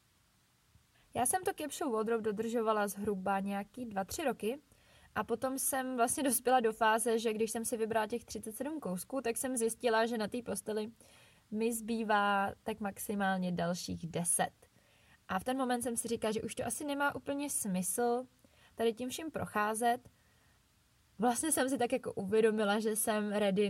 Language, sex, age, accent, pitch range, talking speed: Czech, female, 20-39, native, 200-250 Hz, 165 wpm